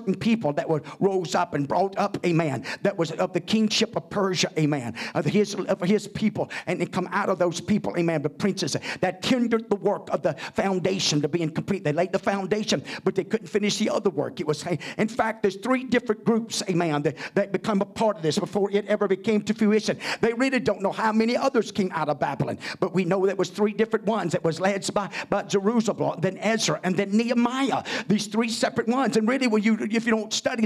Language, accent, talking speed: English, American, 230 wpm